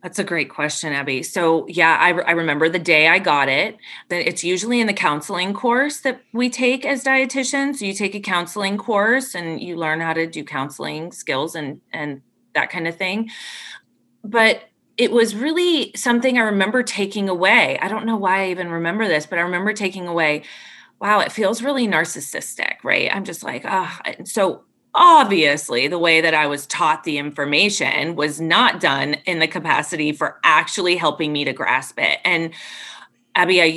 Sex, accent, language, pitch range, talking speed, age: female, American, English, 150-195 Hz, 190 wpm, 30-49